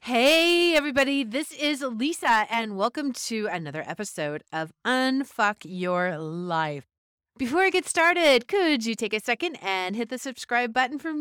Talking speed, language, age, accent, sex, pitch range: 155 wpm, English, 40-59, American, female, 155-230 Hz